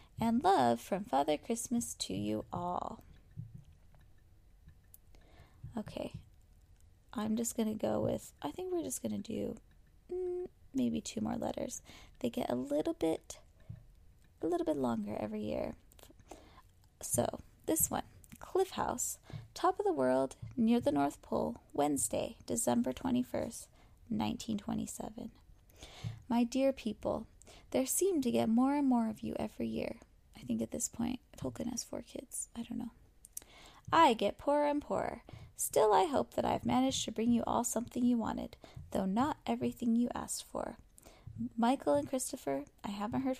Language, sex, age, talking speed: English, female, 20-39, 150 wpm